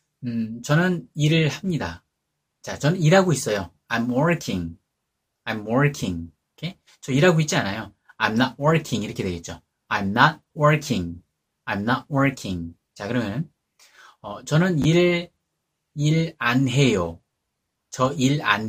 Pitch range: 105-150 Hz